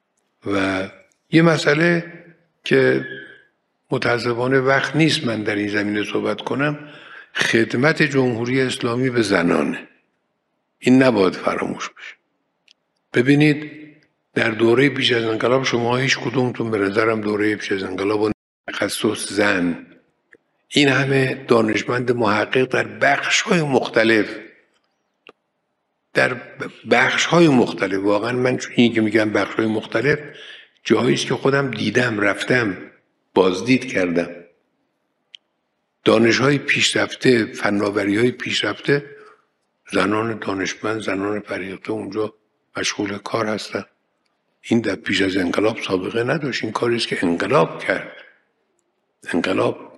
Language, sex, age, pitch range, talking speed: Persian, male, 50-69, 110-140 Hz, 115 wpm